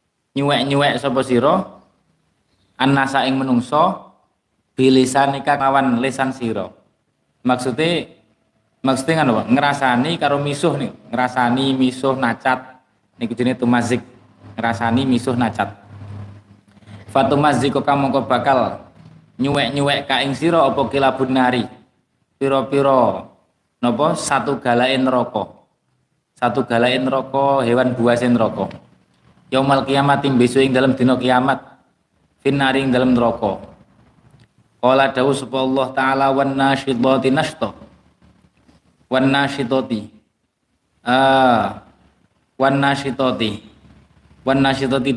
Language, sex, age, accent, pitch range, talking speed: Indonesian, male, 20-39, native, 125-135 Hz, 110 wpm